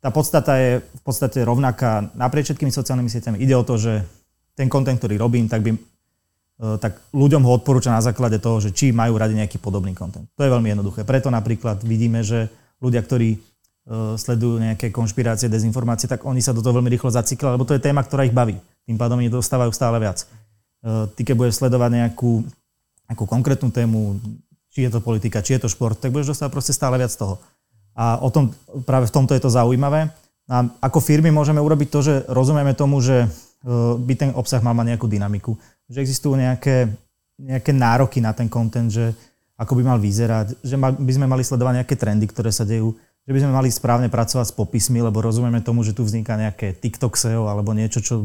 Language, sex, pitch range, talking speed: Slovak, male, 110-130 Hz, 200 wpm